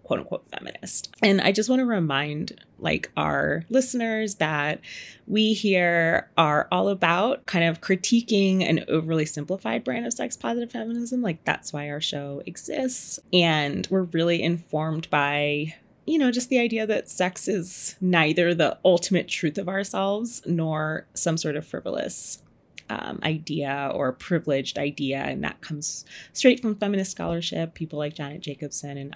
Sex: female